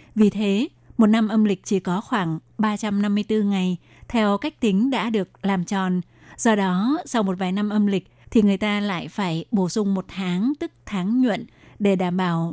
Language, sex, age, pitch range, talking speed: Vietnamese, female, 20-39, 190-220 Hz, 195 wpm